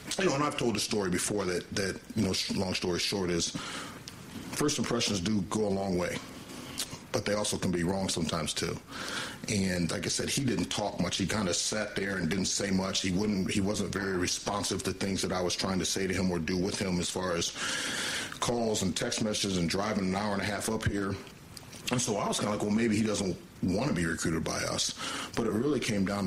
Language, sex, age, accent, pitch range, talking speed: English, male, 40-59, American, 90-105 Hz, 240 wpm